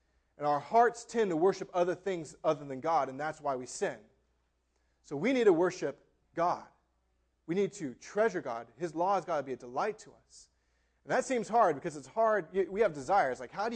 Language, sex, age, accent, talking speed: English, male, 30-49, American, 220 wpm